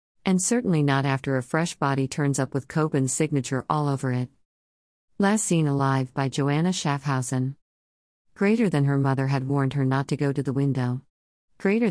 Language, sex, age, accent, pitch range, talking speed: English, female, 50-69, American, 125-155 Hz, 175 wpm